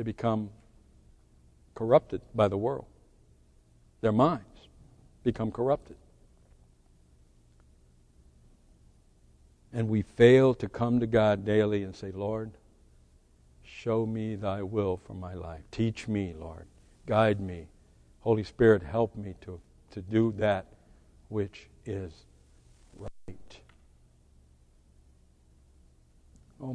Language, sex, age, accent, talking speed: English, male, 60-79, American, 100 wpm